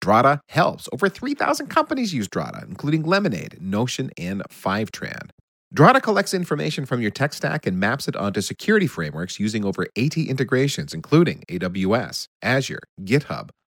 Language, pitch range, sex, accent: English, 105-165 Hz, male, American